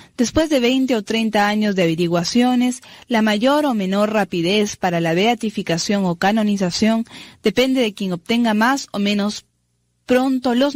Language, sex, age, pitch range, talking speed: Spanish, female, 20-39, 190-240 Hz, 150 wpm